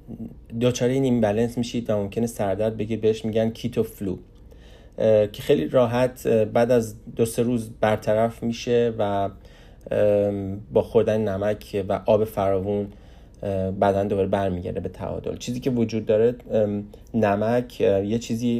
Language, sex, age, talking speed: Persian, male, 30-49, 140 wpm